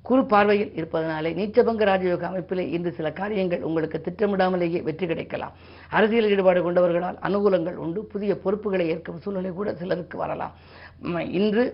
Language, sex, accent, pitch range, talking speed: Tamil, female, native, 170-200 Hz, 110 wpm